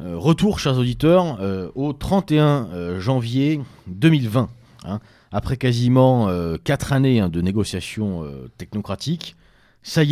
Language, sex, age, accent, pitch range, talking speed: French, male, 40-59, French, 95-140 Hz, 125 wpm